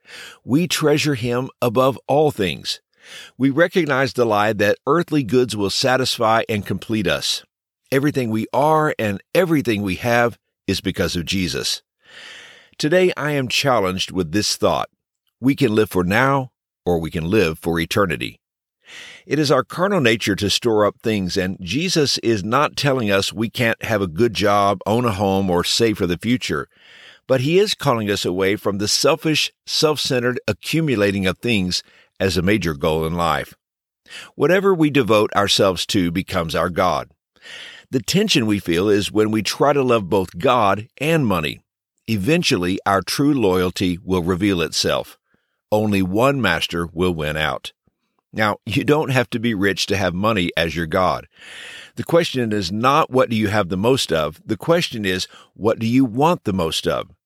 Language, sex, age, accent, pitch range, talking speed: English, male, 50-69, American, 95-135 Hz, 175 wpm